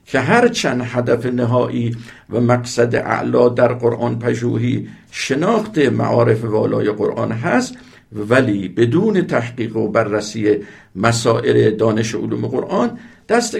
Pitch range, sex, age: 115-160 Hz, male, 50-69